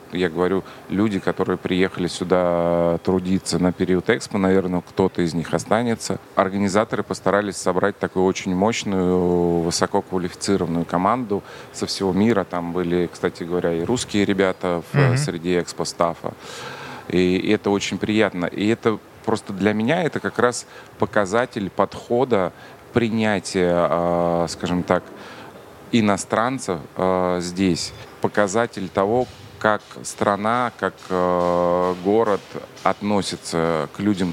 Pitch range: 85-105 Hz